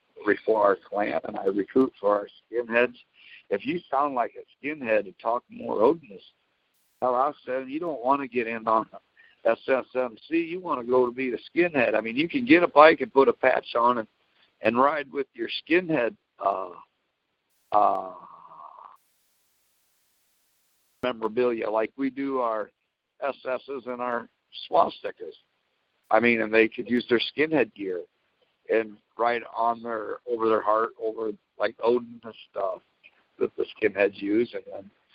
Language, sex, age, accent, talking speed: English, male, 60-79, American, 160 wpm